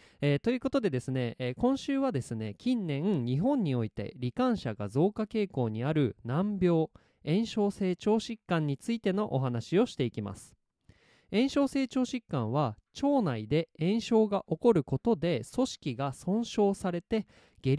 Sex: male